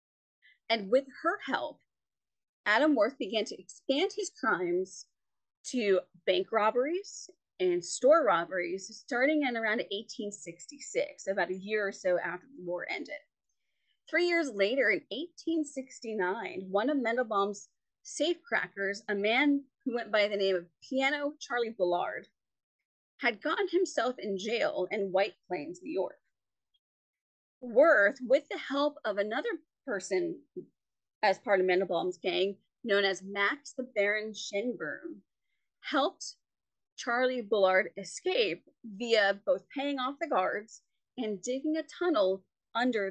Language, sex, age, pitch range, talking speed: English, female, 30-49, 190-285 Hz, 130 wpm